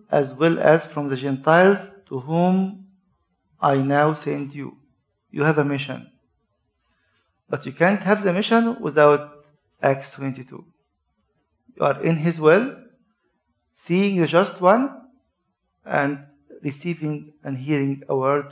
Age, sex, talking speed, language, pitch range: 50-69, male, 130 wpm, Arabic, 135-170 Hz